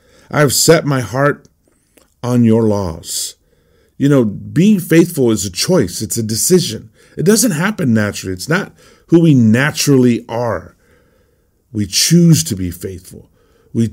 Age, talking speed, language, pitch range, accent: 50-69, 145 wpm, English, 110-150 Hz, American